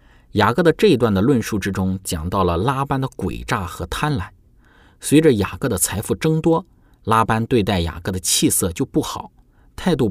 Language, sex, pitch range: Chinese, male, 90-125 Hz